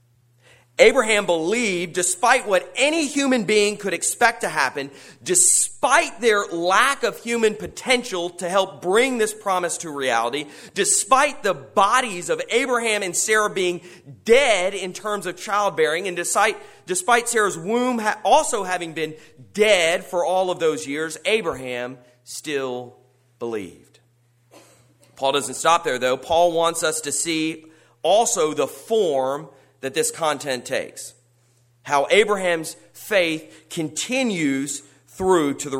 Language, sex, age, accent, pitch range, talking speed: English, male, 30-49, American, 125-195 Hz, 130 wpm